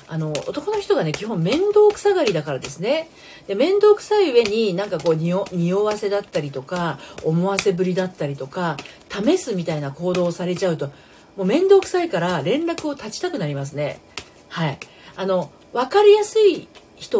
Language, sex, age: Japanese, female, 40-59